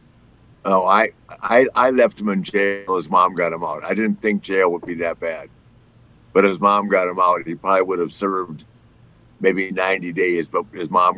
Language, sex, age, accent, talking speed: English, male, 60-79, American, 210 wpm